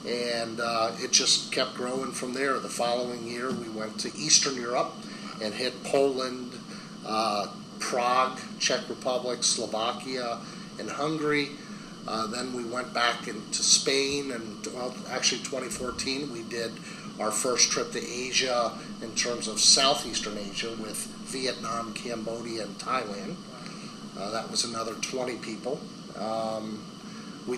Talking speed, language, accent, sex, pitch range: 130 wpm, English, American, male, 115-140 Hz